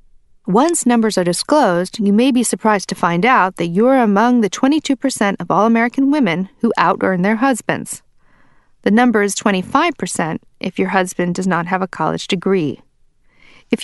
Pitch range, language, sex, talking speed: 185-250 Hz, English, female, 200 wpm